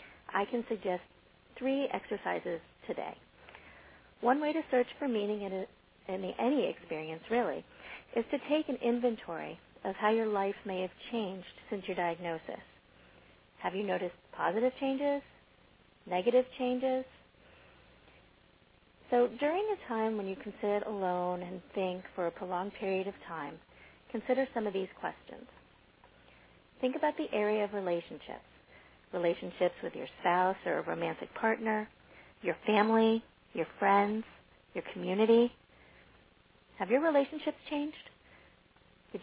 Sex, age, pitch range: female, 40-59, 190-245 Hz